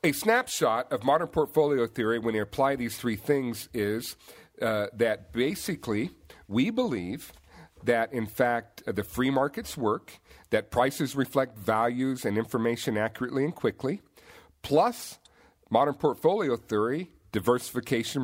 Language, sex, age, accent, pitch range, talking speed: English, male, 50-69, American, 110-145 Hz, 130 wpm